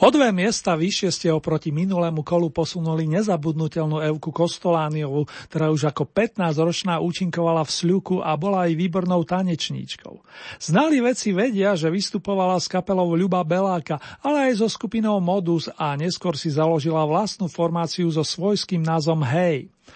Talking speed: 140 wpm